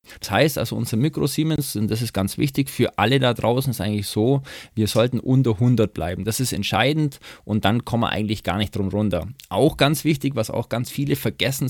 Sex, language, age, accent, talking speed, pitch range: male, German, 20-39, German, 215 wpm, 105-130 Hz